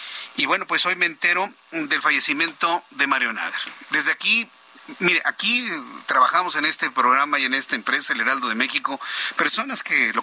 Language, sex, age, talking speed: Spanish, male, 50-69, 175 wpm